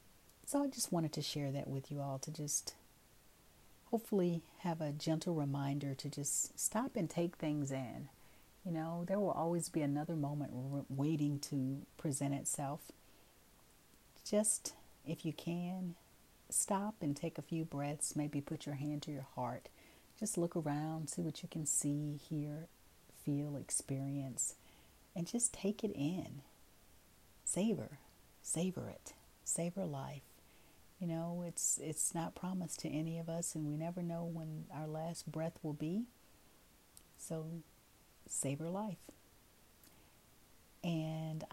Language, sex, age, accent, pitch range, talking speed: English, female, 40-59, American, 145-170 Hz, 140 wpm